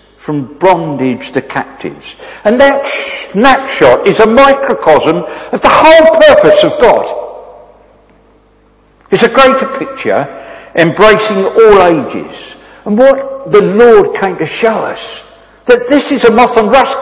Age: 60-79